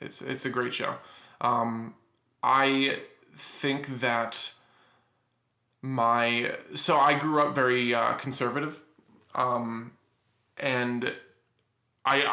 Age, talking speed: 20-39, 95 wpm